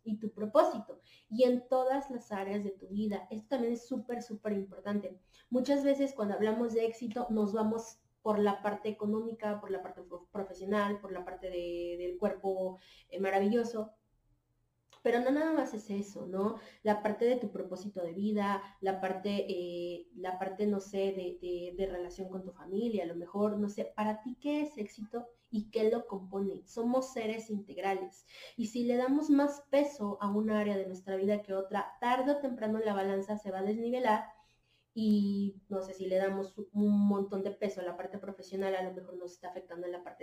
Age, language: 20-39, Spanish